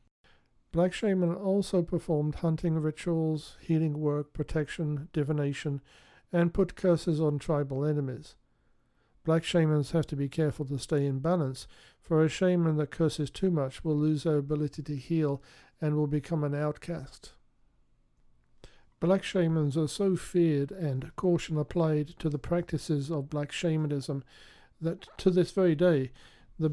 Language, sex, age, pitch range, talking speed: English, male, 50-69, 145-170 Hz, 145 wpm